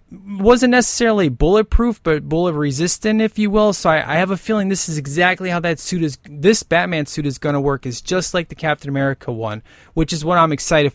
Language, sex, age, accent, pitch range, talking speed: English, male, 20-39, American, 140-185 Hz, 220 wpm